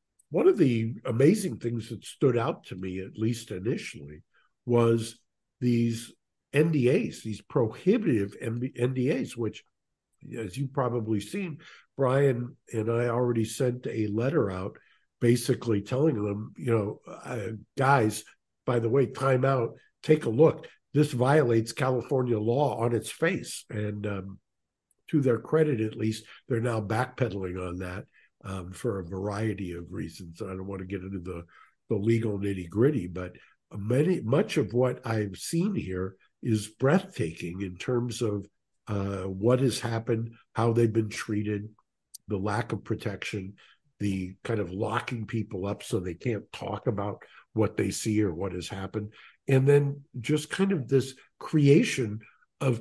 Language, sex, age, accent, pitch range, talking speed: English, male, 60-79, American, 105-130 Hz, 150 wpm